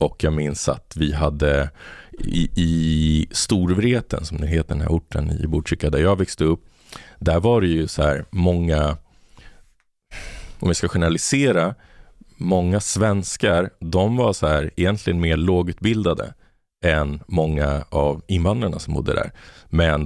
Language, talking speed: Swedish, 145 wpm